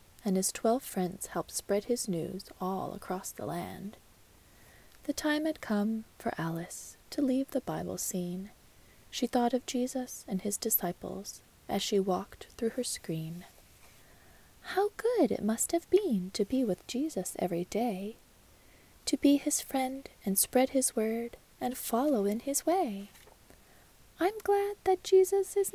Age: 20-39